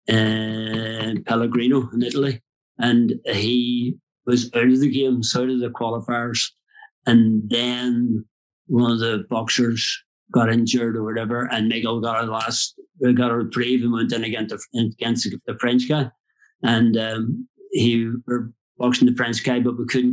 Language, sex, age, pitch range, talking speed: English, male, 50-69, 120-135 Hz, 160 wpm